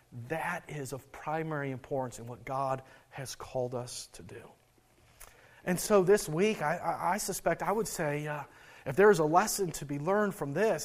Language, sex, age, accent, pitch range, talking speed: English, male, 40-59, American, 135-175 Hz, 190 wpm